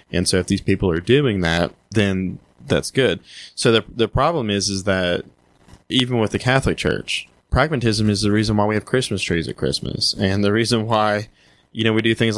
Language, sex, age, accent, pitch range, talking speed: English, male, 20-39, American, 95-115 Hz, 210 wpm